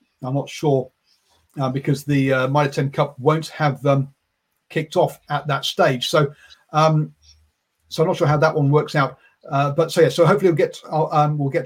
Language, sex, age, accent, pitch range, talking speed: English, male, 40-59, British, 140-160 Hz, 205 wpm